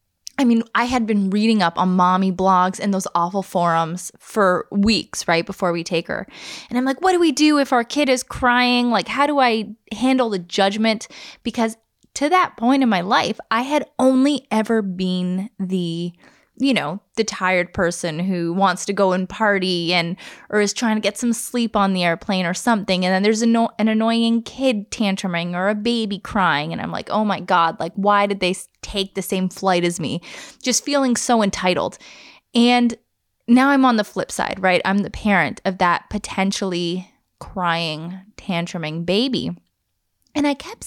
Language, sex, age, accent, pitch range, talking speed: English, female, 20-39, American, 185-245 Hz, 190 wpm